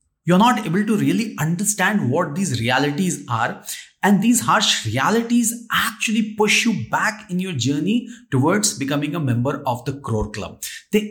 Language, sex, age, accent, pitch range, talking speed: English, male, 30-49, Indian, 140-215 Hz, 160 wpm